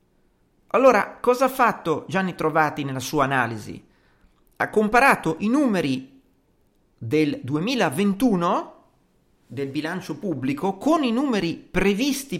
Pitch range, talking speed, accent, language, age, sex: 125-200 Hz, 105 wpm, native, Italian, 50-69, male